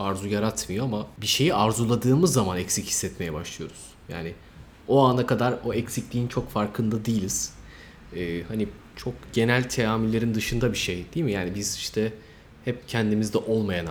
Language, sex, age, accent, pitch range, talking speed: Turkish, male, 30-49, native, 90-125 Hz, 150 wpm